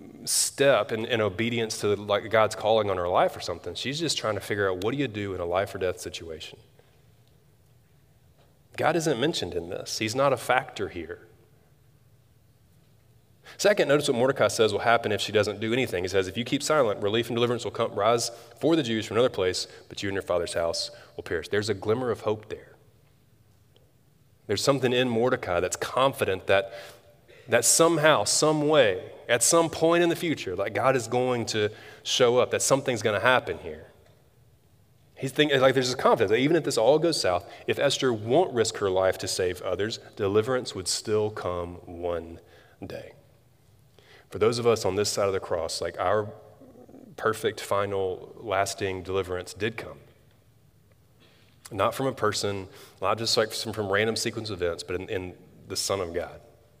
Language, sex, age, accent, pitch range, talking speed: English, male, 30-49, American, 105-135 Hz, 185 wpm